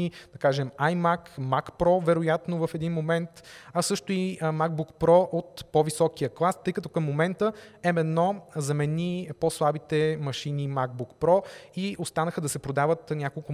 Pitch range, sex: 140-195 Hz, male